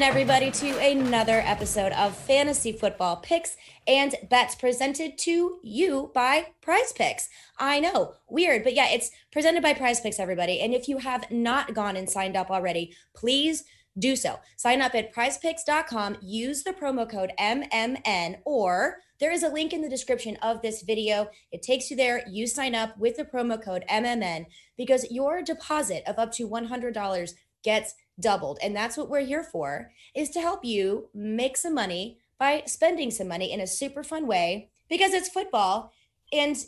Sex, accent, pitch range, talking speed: female, American, 205-290 Hz, 175 wpm